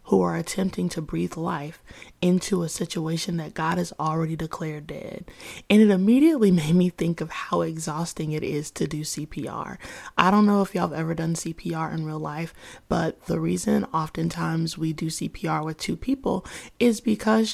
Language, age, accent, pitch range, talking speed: English, 20-39, American, 160-190 Hz, 180 wpm